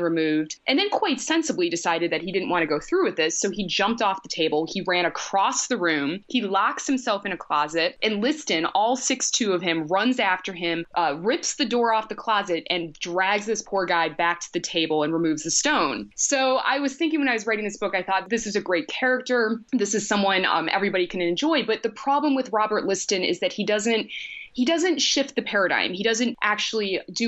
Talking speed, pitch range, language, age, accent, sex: 230 wpm, 175-235 Hz, English, 20-39, American, female